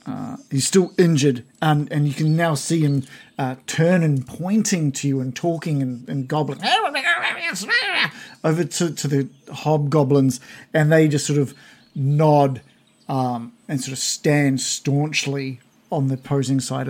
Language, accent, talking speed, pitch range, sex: English, Australian, 155 wpm, 135-160 Hz, male